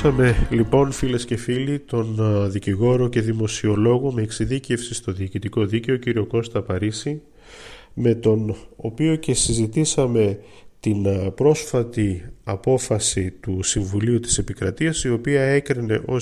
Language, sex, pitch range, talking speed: Greek, male, 105-130 Hz, 120 wpm